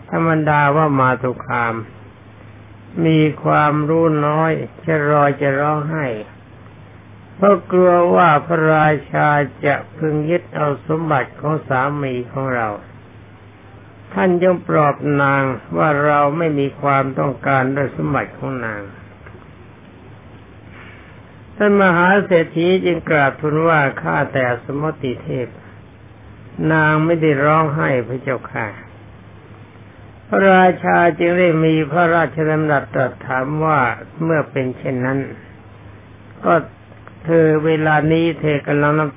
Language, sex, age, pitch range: Thai, male, 60-79, 110-155 Hz